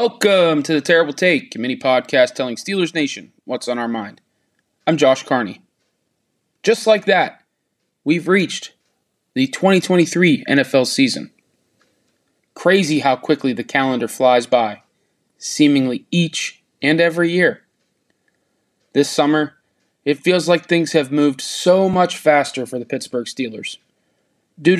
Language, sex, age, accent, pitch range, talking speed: English, male, 20-39, American, 130-175 Hz, 130 wpm